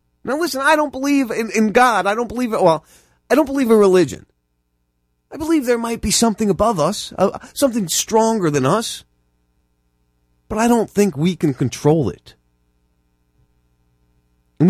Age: 30-49